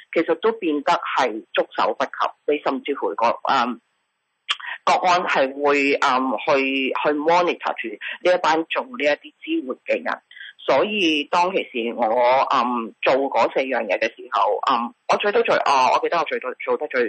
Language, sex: Chinese, female